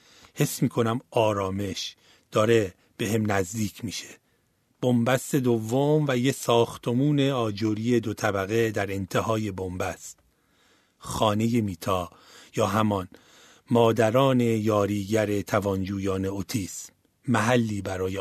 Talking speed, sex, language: 100 wpm, male, Persian